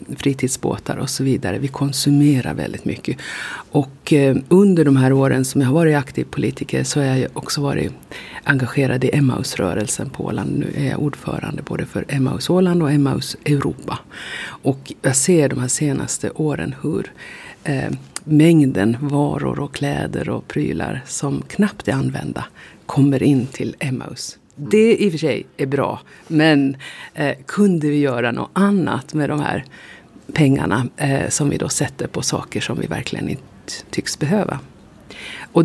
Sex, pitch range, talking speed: female, 135-155 Hz, 160 wpm